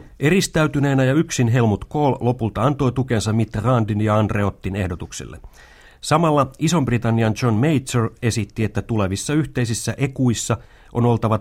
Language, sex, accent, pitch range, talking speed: Finnish, male, native, 95-125 Hz, 125 wpm